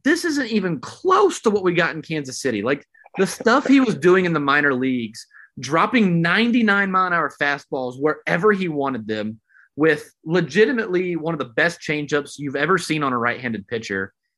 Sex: male